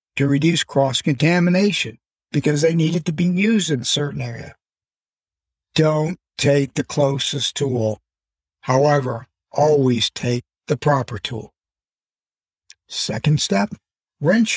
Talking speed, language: 110 wpm, English